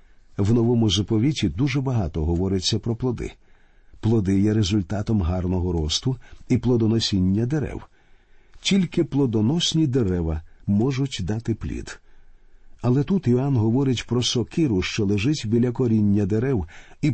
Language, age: Ukrainian, 50-69